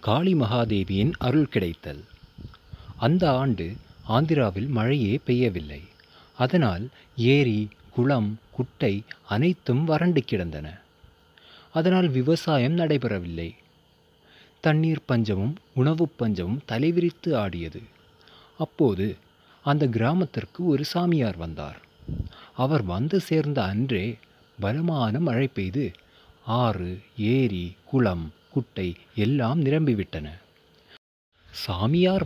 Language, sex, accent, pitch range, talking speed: Tamil, male, native, 105-160 Hz, 85 wpm